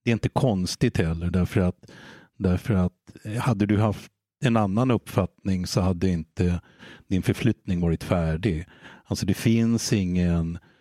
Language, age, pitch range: Swedish, 60-79, 90-115 Hz